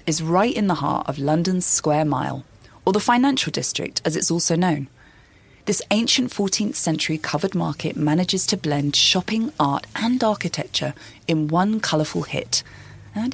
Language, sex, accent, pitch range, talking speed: English, female, British, 150-205 Hz, 155 wpm